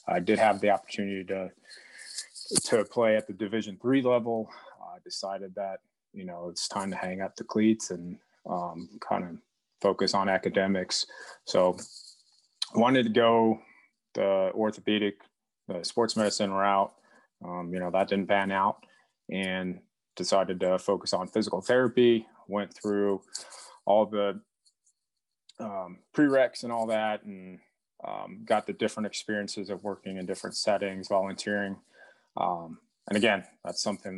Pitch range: 95-105 Hz